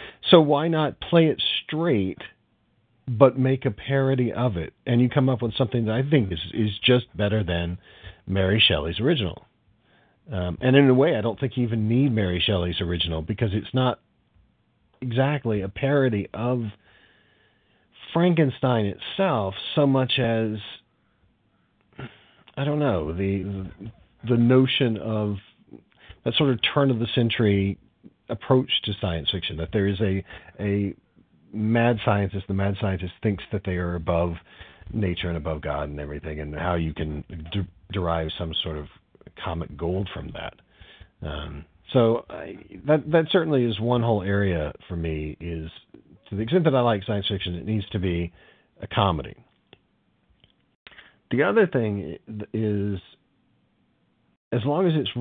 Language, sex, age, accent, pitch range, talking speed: English, male, 40-59, American, 90-125 Hz, 155 wpm